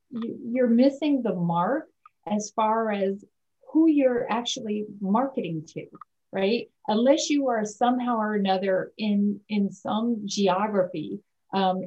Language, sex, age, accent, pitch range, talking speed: English, female, 30-49, American, 195-250 Hz, 120 wpm